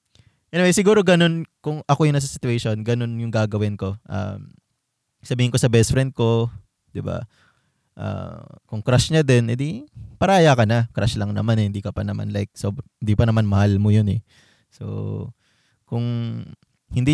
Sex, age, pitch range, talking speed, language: male, 20-39, 105-135 Hz, 180 wpm, Filipino